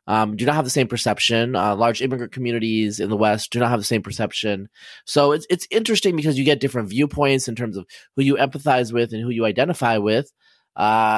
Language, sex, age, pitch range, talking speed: English, male, 30-49, 110-140 Hz, 220 wpm